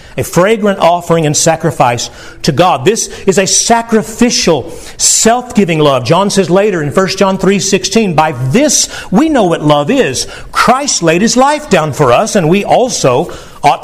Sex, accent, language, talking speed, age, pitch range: male, American, English, 165 wpm, 50-69, 160-225 Hz